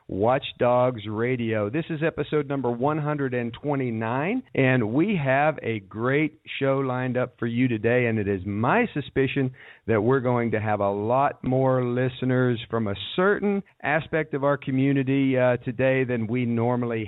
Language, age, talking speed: English, 50-69, 160 wpm